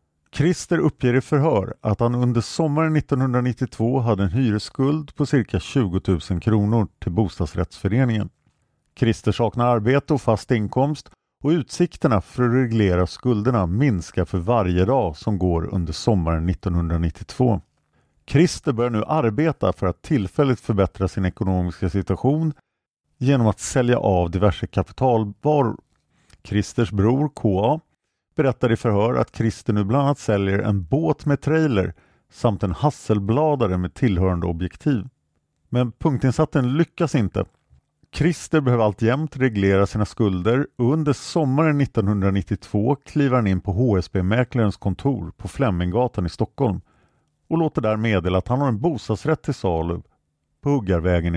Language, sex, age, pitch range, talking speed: Swedish, male, 50-69, 95-135 Hz, 135 wpm